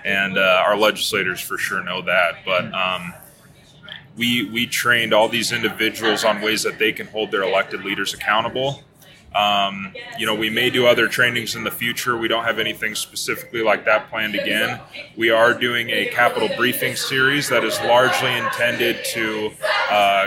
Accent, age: American, 20-39